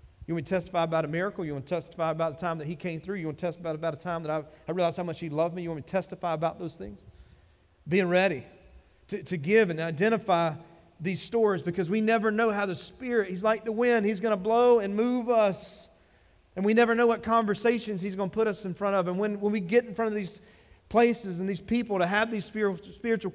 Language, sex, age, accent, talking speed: English, male, 40-59, American, 260 wpm